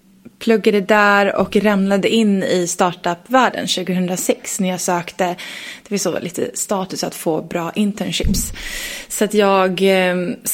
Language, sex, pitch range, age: English, female, 185-220 Hz, 20-39